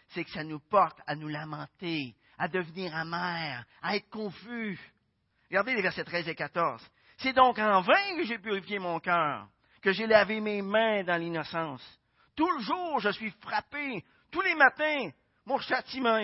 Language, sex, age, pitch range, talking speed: French, male, 50-69, 150-250 Hz, 175 wpm